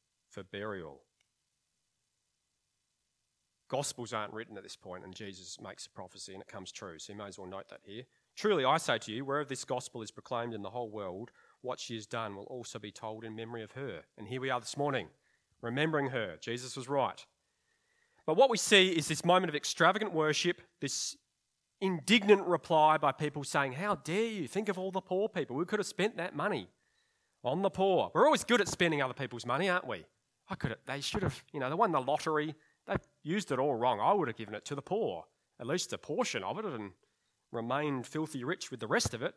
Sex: male